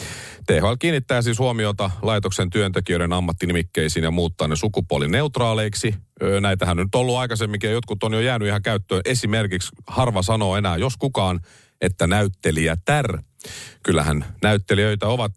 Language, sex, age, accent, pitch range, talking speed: Finnish, male, 40-59, native, 95-125 Hz, 135 wpm